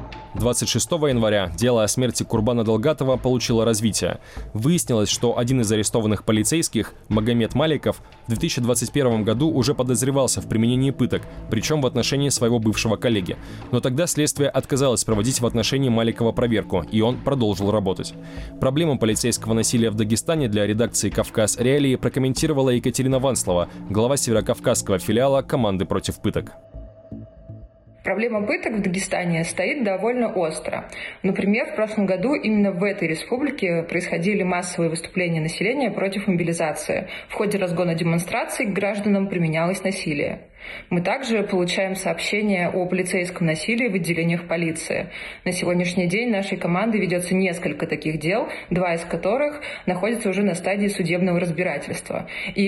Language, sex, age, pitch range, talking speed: Russian, male, 20-39, 125-190 Hz, 135 wpm